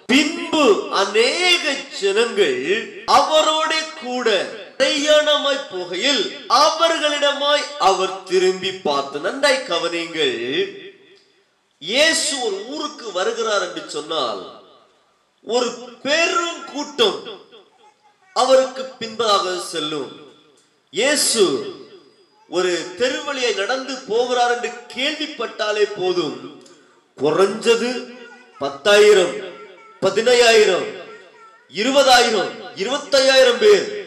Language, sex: Tamil, male